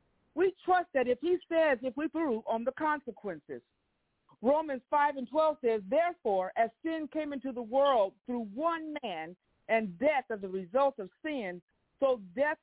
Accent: American